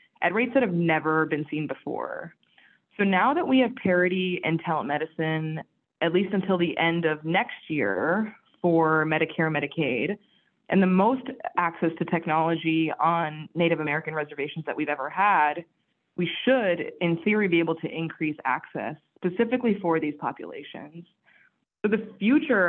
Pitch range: 160-205 Hz